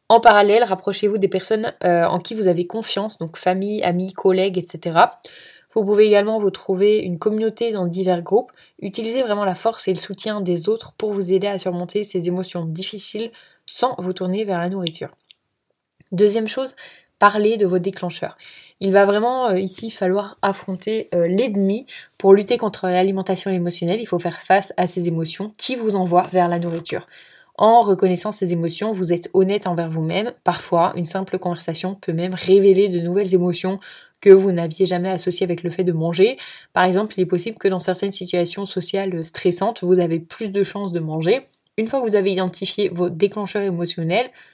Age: 20-39